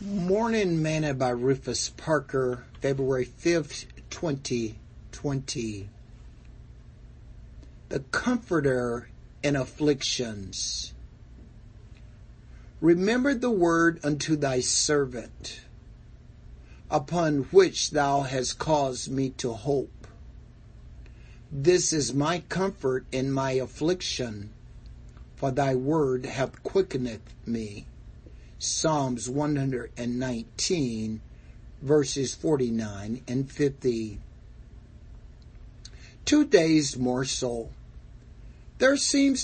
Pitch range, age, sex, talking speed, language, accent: 120-150 Hz, 60-79, male, 80 wpm, English, American